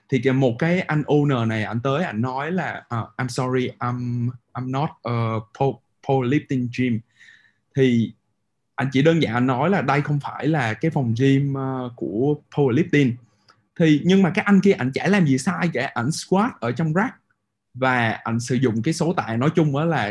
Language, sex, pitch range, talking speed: Vietnamese, male, 120-155 Hz, 195 wpm